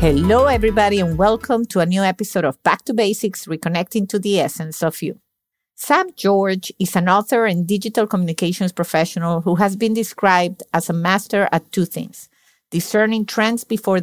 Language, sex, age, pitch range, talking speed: English, female, 50-69, 170-210 Hz, 170 wpm